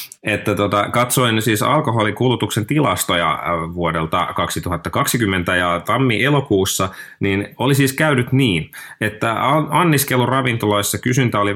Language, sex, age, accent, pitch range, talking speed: Finnish, male, 30-49, native, 85-115 Hz, 95 wpm